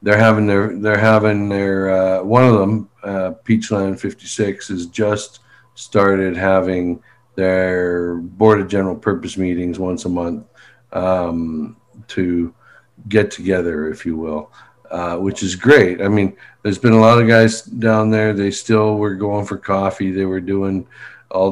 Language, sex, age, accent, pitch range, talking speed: English, male, 50-69, American, 95-115 Hz, 160 wpm